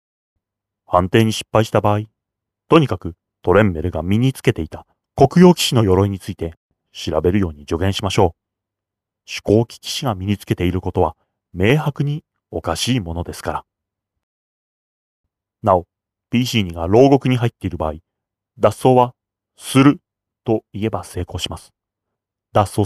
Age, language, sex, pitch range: 30-49, Japanese, male, 90-115 Hz